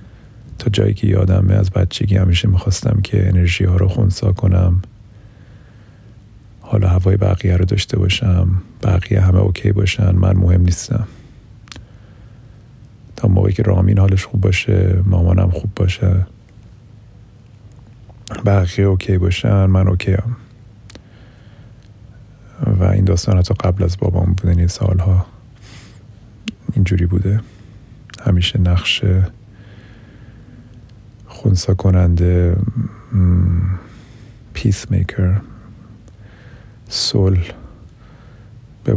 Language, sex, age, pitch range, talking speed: Persian, male, 40-59, 95-110 Hz, 90 wpm